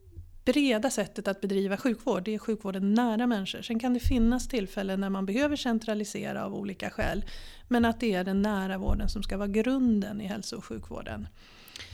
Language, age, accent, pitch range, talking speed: Swedish, 40-59, native, 205-245 Hz, 185 wpm